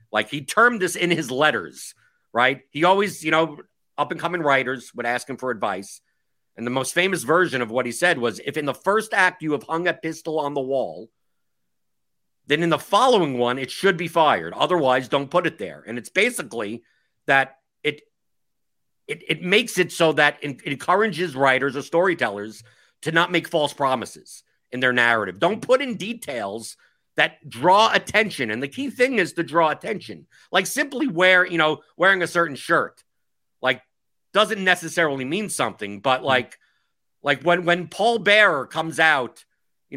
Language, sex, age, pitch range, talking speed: English, male, 50-69, 135-185 Hz, 180 wpm